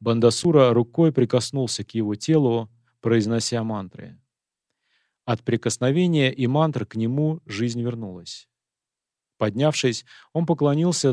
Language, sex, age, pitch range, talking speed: Russian, male, 30-49, 115-135 Hz, 100 wpm